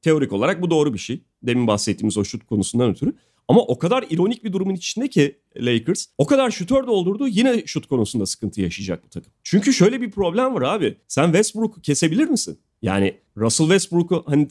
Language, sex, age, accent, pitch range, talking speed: Turkish, male, 40-59, native, 120-185 Hz, 185 wpm